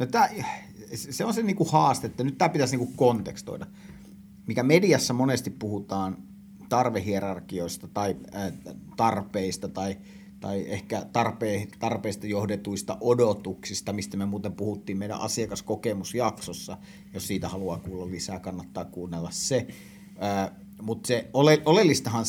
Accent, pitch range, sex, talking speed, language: native, 100-145 Hz, male, 130 wpm, Finnish